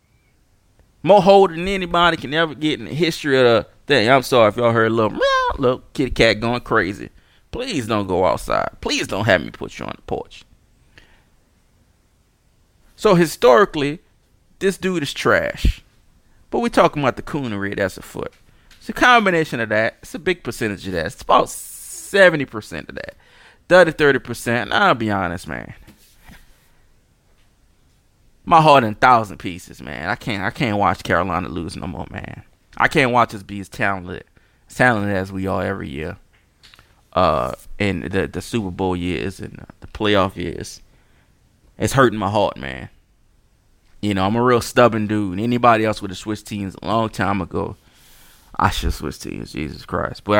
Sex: male